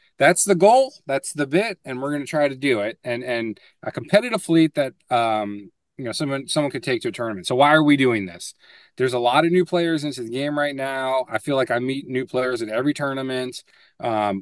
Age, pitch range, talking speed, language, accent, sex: 20-39, 120-155 Hz, 240 wpm, English, American, male